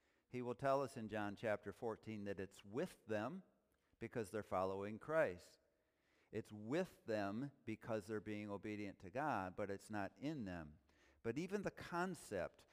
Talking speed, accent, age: 160 wpm, American, 50-69